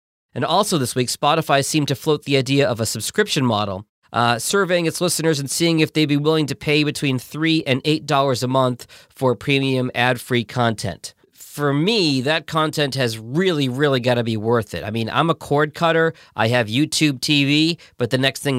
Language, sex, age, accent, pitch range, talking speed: English, male, 40-59, American, 120-155 Hz, 200 wpm